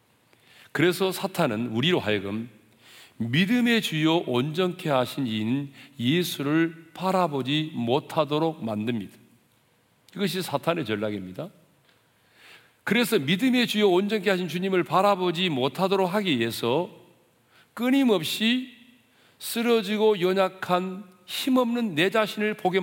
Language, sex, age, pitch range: Korean, male, 40-59, 120-200 Hz